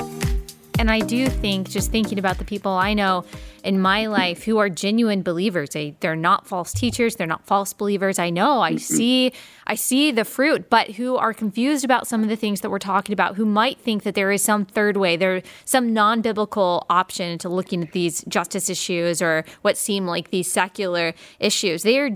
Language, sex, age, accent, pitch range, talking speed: English, female, 20-39, American, 185-215 Hz, 205 wpm